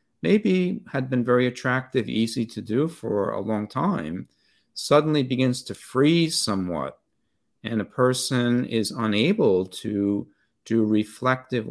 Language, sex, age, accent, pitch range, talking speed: English, male, 50-69, American, 105-130 Hz, 130 wpm